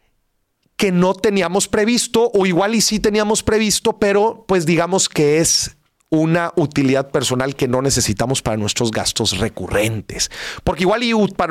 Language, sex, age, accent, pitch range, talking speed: Spanish, male, 40-59, Mexican, 120-185 Hz, 150 wpm